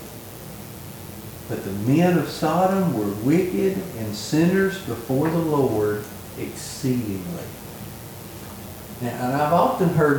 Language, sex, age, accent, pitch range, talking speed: English, male, 50-69, American, 110-150 Hz, 100 wpm